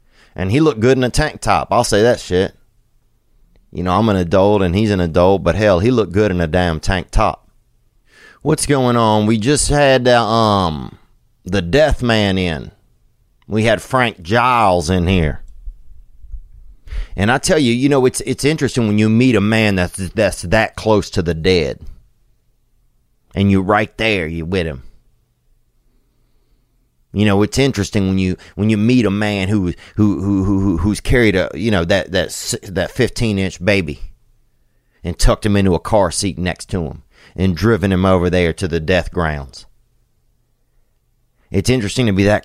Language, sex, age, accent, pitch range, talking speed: English, male, 30-49, American, 90-115 Hz, 180 wpm